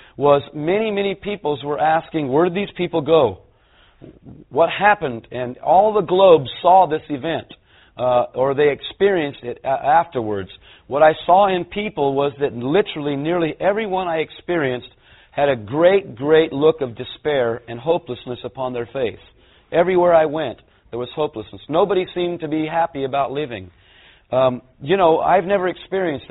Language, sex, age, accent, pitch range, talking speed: English, male, 40-59, American, 130-170 Hz, 155 wpm